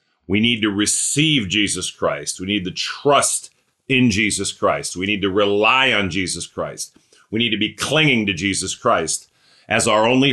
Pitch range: 95-125 Hz